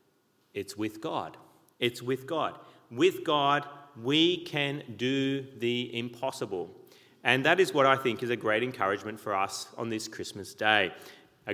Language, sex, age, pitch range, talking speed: English, male, 30-49, 130-175 Hz, 155 wpm